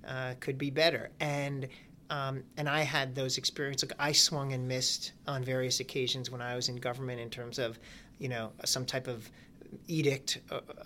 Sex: male